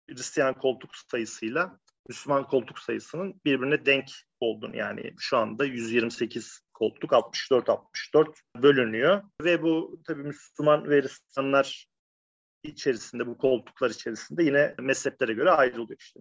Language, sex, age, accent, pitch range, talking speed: Turkish, male, 40-59, native, 120-155 Hz, 115 wpm